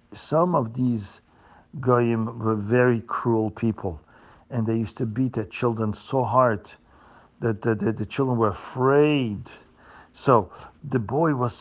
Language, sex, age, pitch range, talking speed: English, male, 50-69, 115-160 Hz, 145 wpm